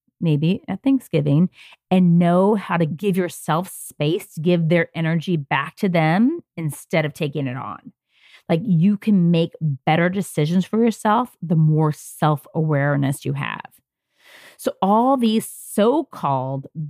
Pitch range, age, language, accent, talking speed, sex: 155-200 Hz, 30-49, English, American, 135 wpm, female